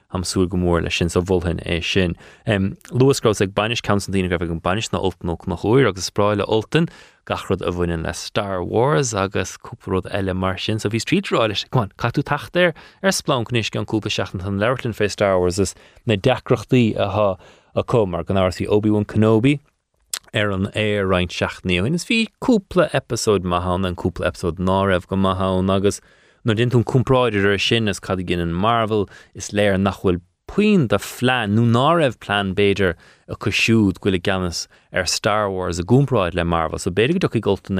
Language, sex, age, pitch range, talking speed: English, male, 20-39, 90-110 Hz, 150 wpm